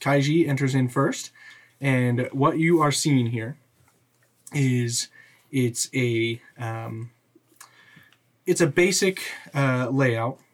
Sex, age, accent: male, 20-39, American